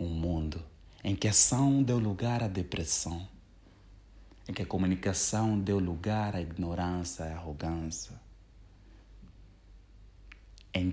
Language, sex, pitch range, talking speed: Portuguese, male, 85-100 Hz, 120 wpm